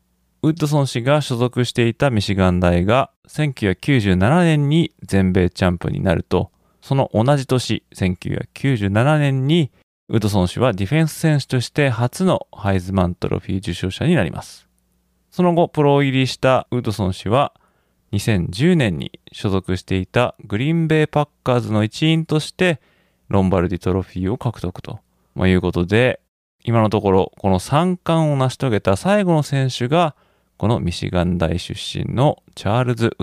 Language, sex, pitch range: Japanese, male, 95-150 Hz